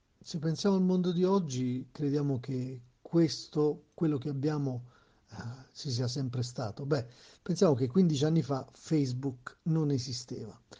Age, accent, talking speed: 50-69, native, 145 wpm